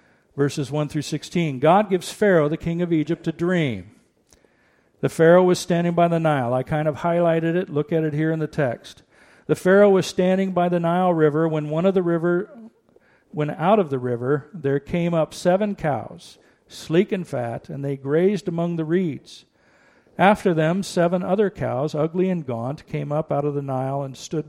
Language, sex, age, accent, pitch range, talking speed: English, male, 50-69, American, 145-180 Hz, 195 wpm